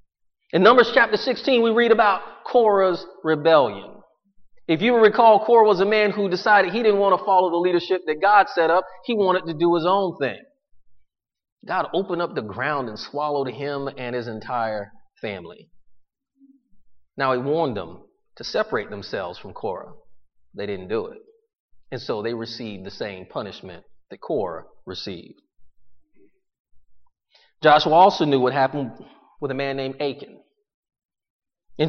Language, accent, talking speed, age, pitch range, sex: English, American, 155 wpm, 30-49, 135-220 Hz, male